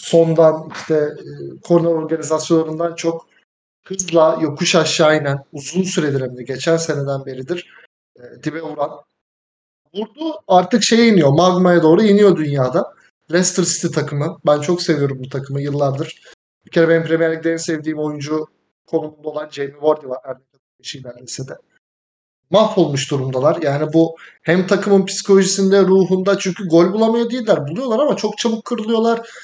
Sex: male